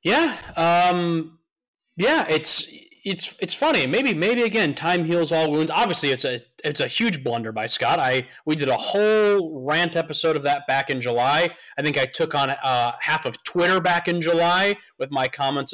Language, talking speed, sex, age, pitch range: English, 190 wpm, male, 30-49, 135-195 Hz